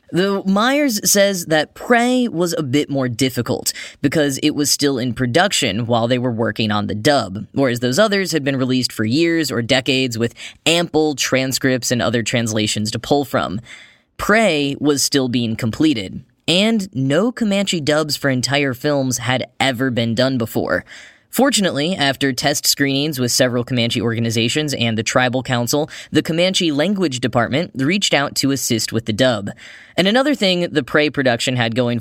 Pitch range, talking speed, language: 120-155 Hz, 170 wpm, English